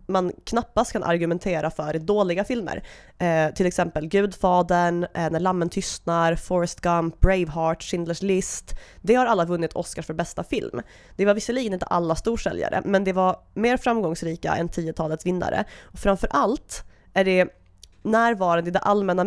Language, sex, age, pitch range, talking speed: English, female, 20-39, 165-205 Hz, 160 wpm